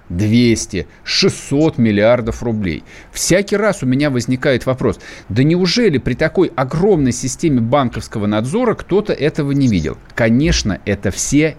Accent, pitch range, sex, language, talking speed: native, 120-170 Hz, male, Russian, 130 wpm